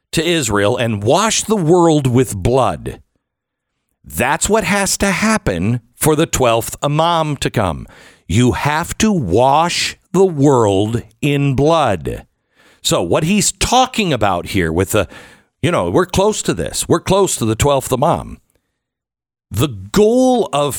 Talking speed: 145 wpm